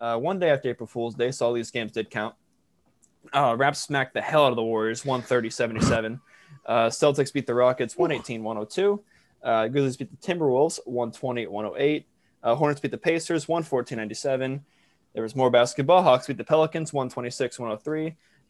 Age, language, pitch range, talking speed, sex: 20-39, English, 115-145 Hz, 160 wpm, male